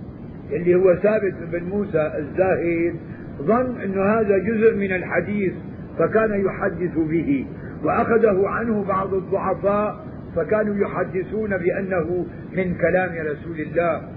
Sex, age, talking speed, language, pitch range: male, 50-69, 110 wpm, Arabic, 170-200 Hz